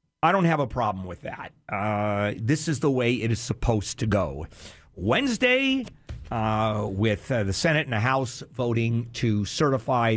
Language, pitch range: English, 120-170 Hz